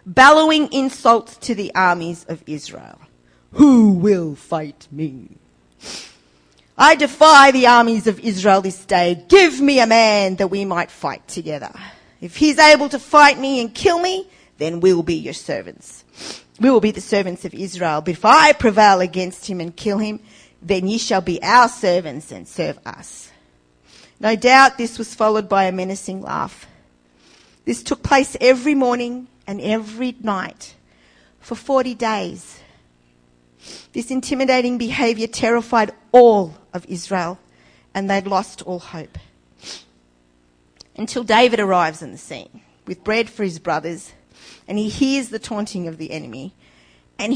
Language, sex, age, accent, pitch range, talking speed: English, female, 40-59, Australian, 165-250 Hz, 150 wpm